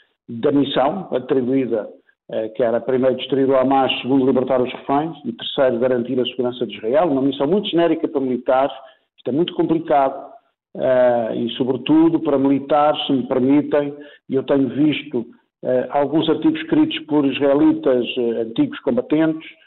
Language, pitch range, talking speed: Portuguese, 130-155 Hz, 160 wpm